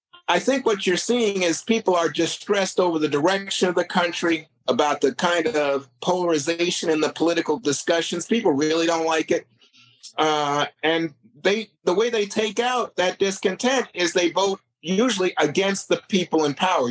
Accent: American